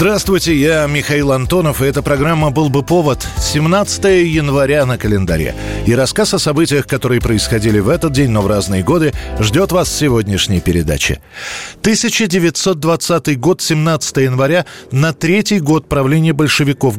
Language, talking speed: Russian, 145 wpm